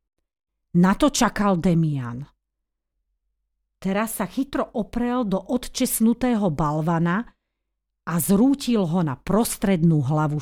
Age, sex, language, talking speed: 40-59, female, Slovak, 100 wpm